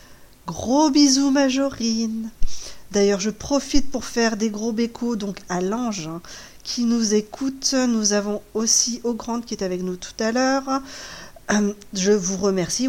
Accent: French